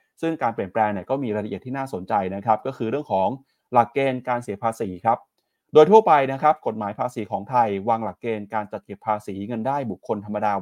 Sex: male